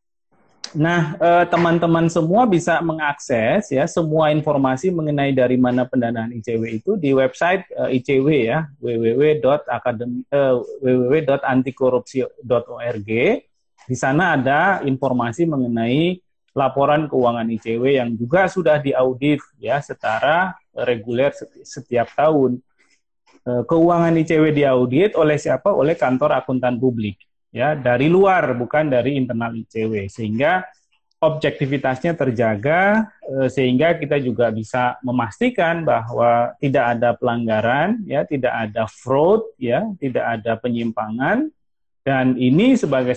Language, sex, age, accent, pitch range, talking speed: Indonesian, male, 30-49, native, 120-160 Hz, 105 wpm